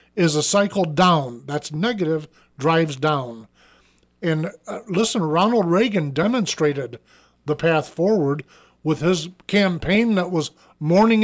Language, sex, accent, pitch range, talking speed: English, male, American, 160-230 Hz, 125 wpm